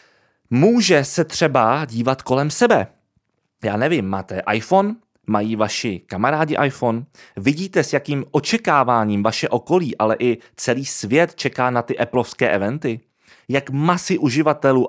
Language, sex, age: Czech, male, 20-39